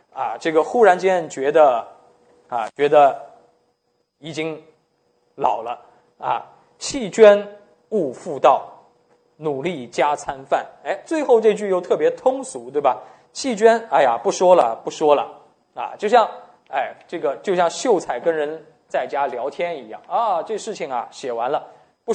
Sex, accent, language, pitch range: male, native, Chinese, 180-295 Hz